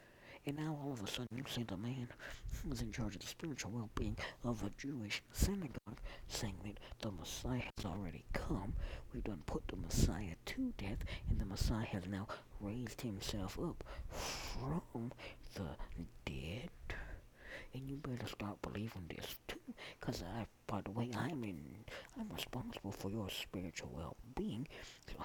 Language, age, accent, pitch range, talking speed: English, 60-79, American, 95-130 Hz, 155 wpm